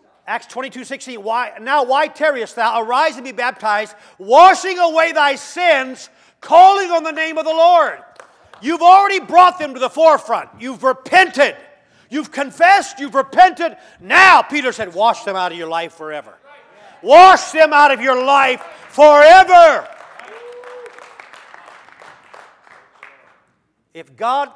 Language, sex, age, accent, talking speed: English, male, 40-59, American, 130 wpm